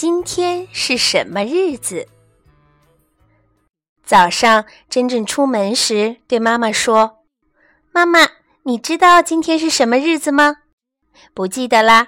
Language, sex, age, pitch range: Chinese, female, 20-39, 215-315 Hz